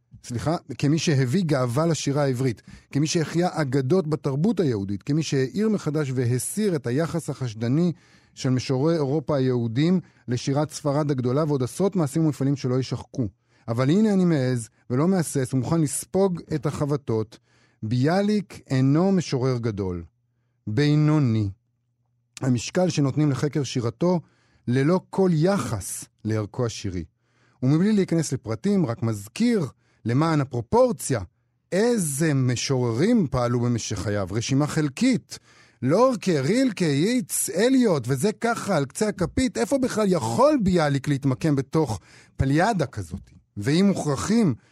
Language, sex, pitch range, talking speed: Hebrew, male, 120-165 Hz, 120 wpm